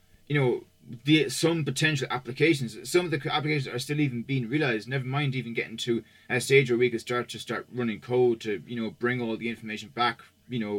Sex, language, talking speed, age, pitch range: male, English, 220 wpm, 20-39, 115-135 Hz